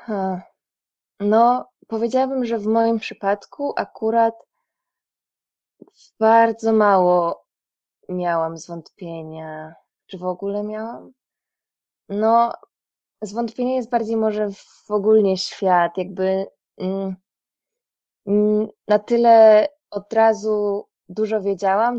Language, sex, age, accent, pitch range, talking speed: Polish, female, 20-39, native, 180-220 Hz, 80 wpm